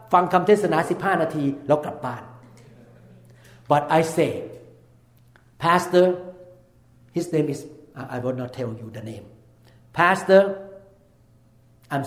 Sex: male